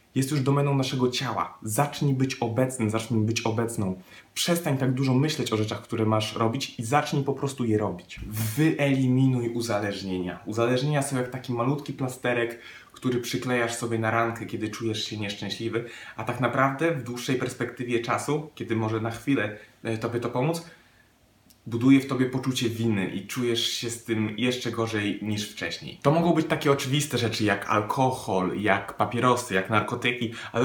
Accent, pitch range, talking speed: native, 110-140 Hz, 165 wpm